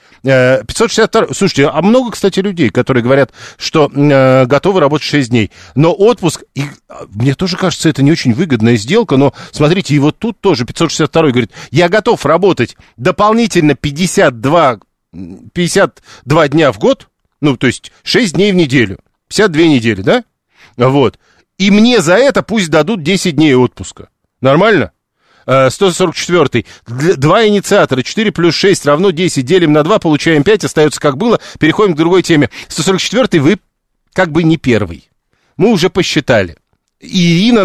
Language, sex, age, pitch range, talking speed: Russian, male, 40-59, 135-185 Hz, 145 wpm